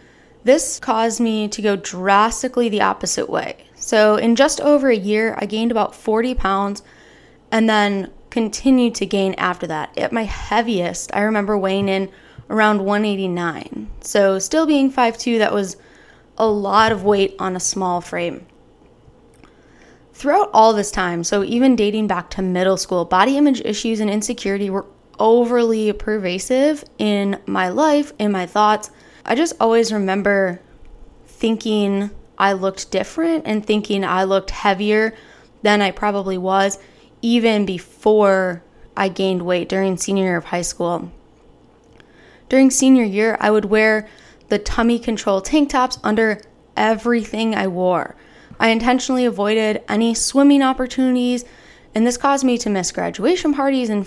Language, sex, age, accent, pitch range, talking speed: English, female, 20-39, American, 195-240 Hz, 150 wpm